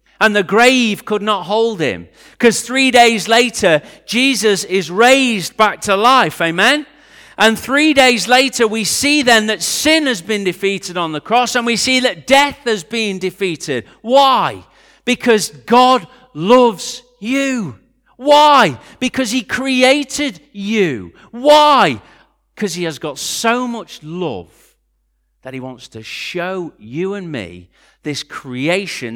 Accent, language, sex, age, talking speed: British, English, male, 40-59, 140 wpm